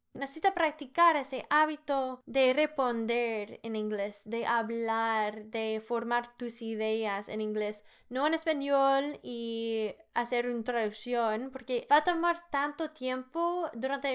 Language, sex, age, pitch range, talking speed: Spanish, female, 10-29, 225-275 Hz, 125 wpm